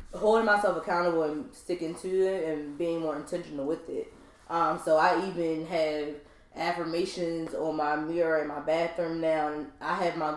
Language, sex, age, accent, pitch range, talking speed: English, female, 20-39, American, 155-180 Hz, 170 wpm